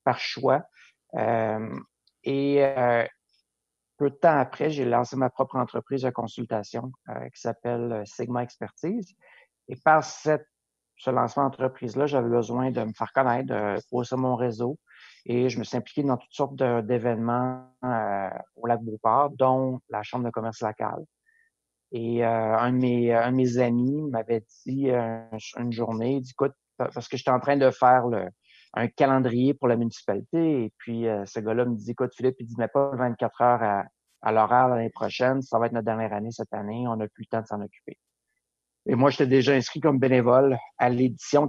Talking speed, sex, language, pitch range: 190 wpm, male, French, 115-130 Hz